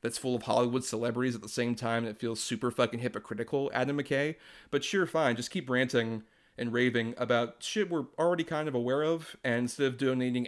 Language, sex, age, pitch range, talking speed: English, male, 30-49, 120-145 Hz, 205 wpm